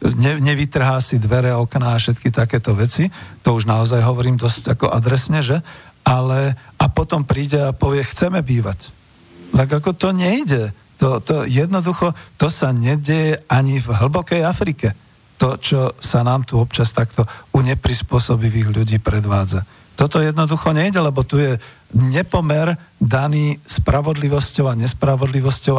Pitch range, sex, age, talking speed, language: 120-150 Hz, male, 50-69, 140 wpm, Slovak